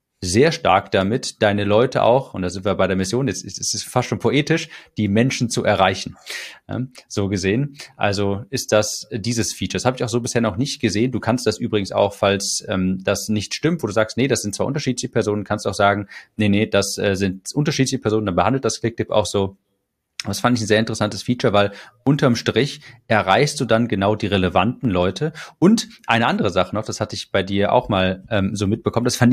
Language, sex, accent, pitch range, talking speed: German, male, German, 100-125 Hz, 225 wpm